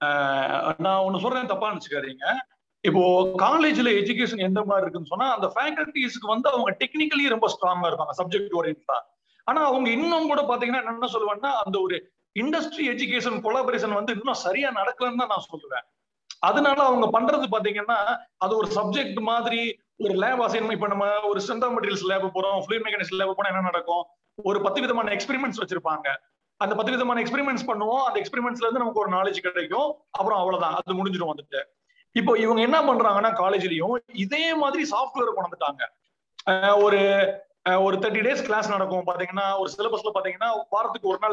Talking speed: 150 wpm